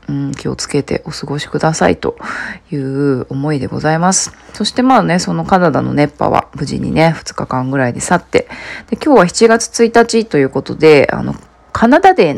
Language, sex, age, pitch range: Japanese, female, 20-39, 140-175 Hz